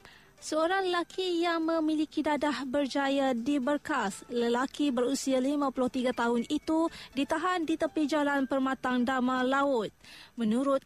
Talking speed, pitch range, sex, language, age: 110 wpm, 255-305 Hz, female, Malay, 20-39